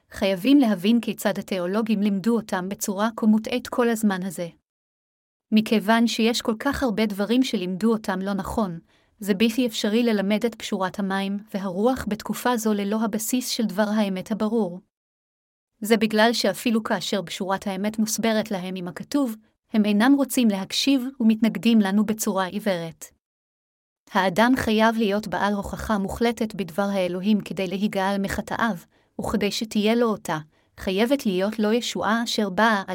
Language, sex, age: Hebrew, female, 30-49